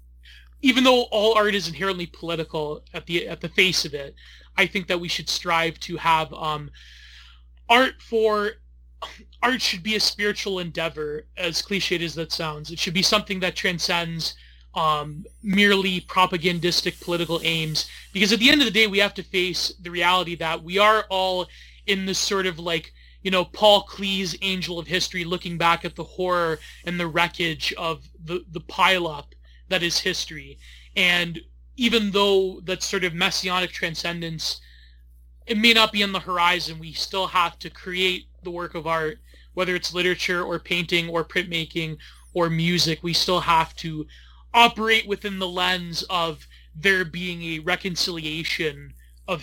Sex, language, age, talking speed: male, English, 30-49, 170 wpm